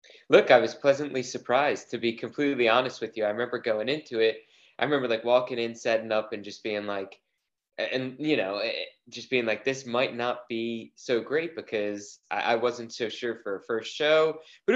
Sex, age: male, 20-39